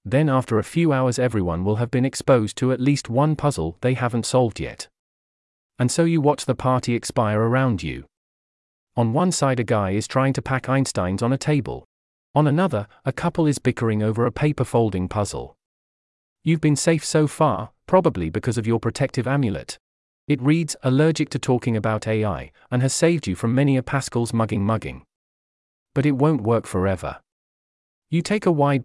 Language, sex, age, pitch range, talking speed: English, male, 40-59, 105-140 Hz, 185 wpm